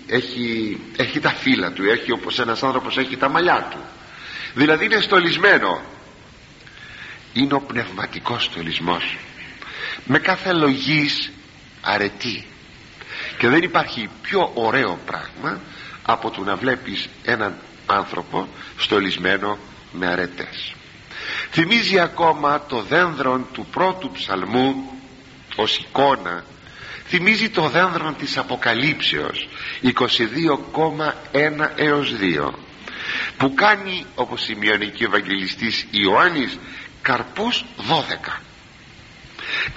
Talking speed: 100 wpm